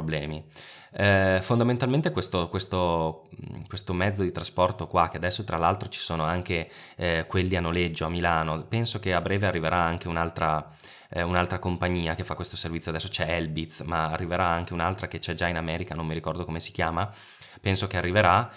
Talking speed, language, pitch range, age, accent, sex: 185 wpm, Italian, 85-95 Hz, 20-39, native, male